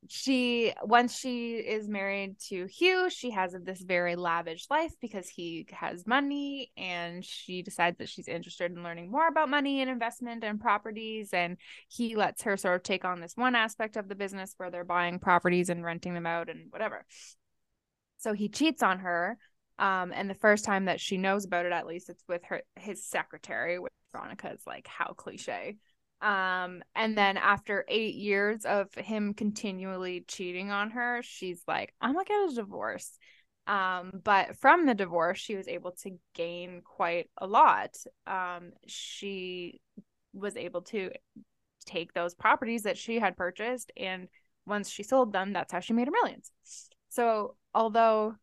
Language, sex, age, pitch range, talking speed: English, female, 10-29, 180-230 Hz, 175 wpm